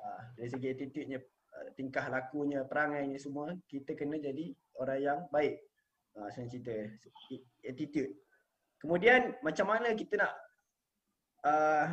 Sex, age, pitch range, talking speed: male, 20-39, 135-170 Hz, 125 wpm